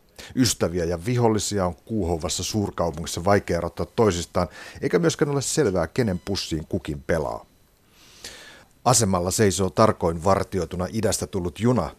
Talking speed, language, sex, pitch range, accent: 120 wpm, Finnish, male, 85-105 Hz, native